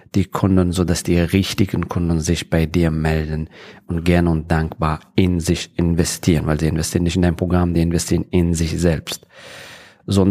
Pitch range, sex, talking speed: 85-100 Hz, male, 185 wpm